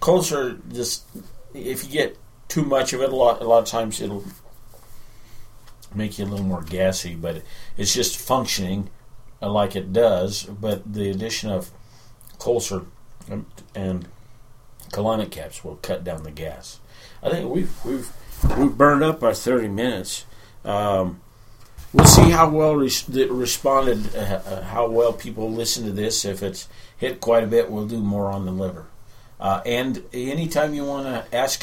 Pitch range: 95-120 Hz